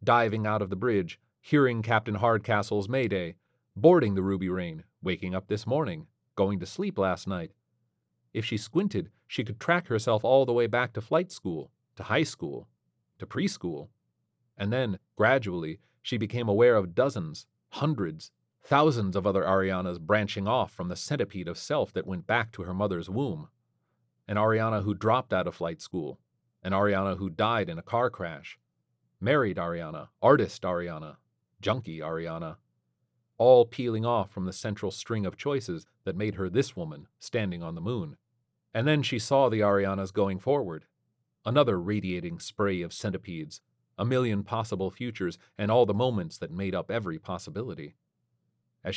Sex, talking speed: male, 165 wpm